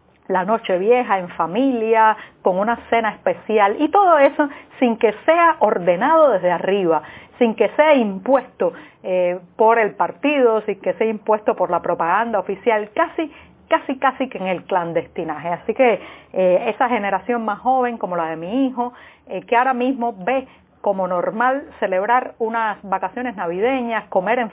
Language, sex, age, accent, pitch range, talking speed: Spanish, female, 40-59, American, 185-250 Hz, 160 wpm